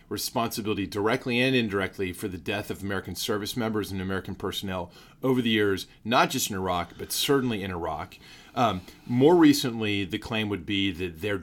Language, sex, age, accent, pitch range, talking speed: English, male, 30-49, American, 95-120 Hz, 180 wpm